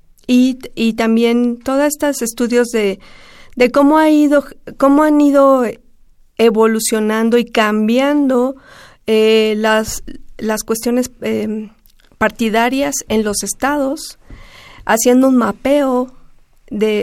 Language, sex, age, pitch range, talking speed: Spanish, female, 40-59, 215-255 Hz, 105 wpm